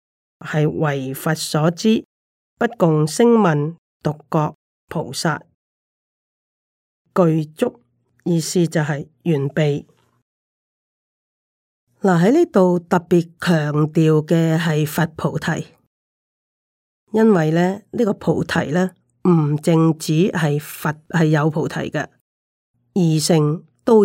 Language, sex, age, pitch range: Chinese, female, 30-49, 155-185 Hz